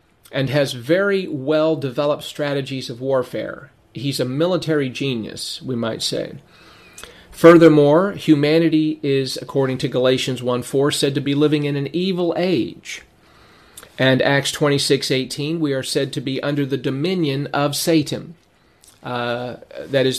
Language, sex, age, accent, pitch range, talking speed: English, male, 40-59, American, 125-150 Hz, 135 wpm